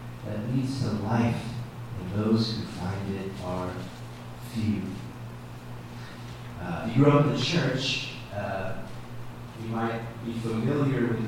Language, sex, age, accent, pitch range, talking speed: English, male, 40-59, American, 110-140 Hz, 135 wpm